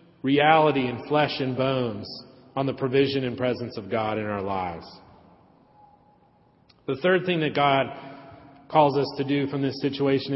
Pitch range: 125-145 Hz